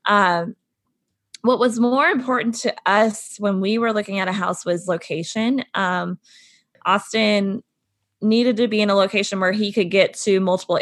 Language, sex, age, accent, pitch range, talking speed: English, female, 20-39, American, 175-220 Hz, 165 wpm